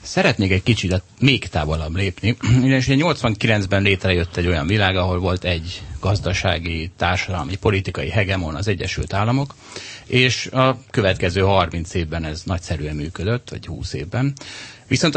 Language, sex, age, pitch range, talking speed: Hungarian, male, 30-49, 90-120 Hz, 140 wpm